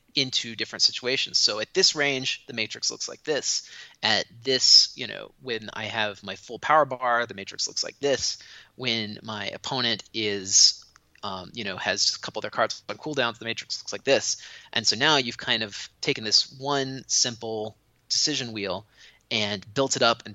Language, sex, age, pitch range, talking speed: English, male, 30-49, 110-130 Hz, 190 wpm